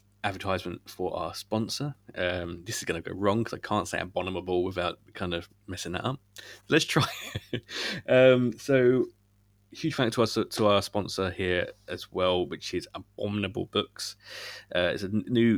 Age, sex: 20-39, male